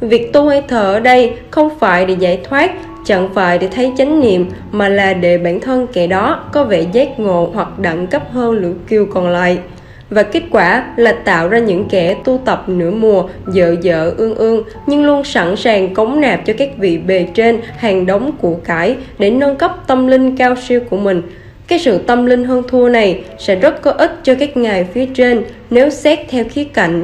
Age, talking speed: 10-29, 215 wpm